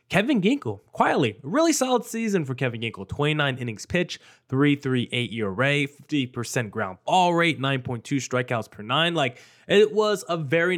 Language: English